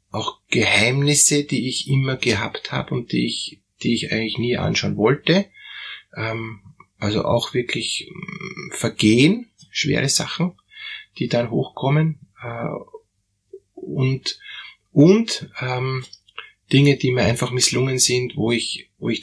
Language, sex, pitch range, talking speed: German, male, 105-140 Hz, 120 wpm